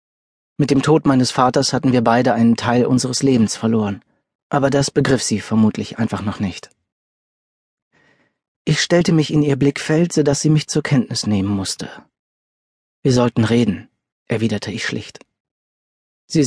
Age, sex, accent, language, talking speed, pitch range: 40-59, male, German, German, 155 wpm, 115-150 Hz